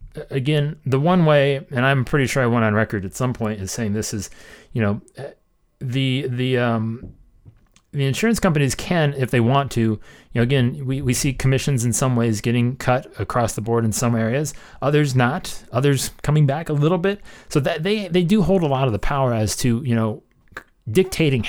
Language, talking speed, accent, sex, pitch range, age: English, 205 wpm, American, male, 110-150 Hz, 30-49